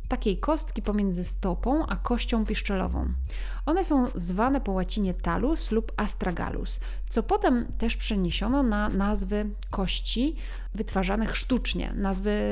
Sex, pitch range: female, 180-240 Hz